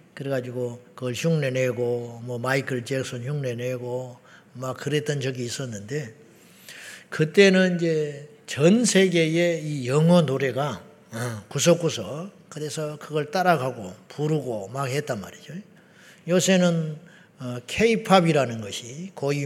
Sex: male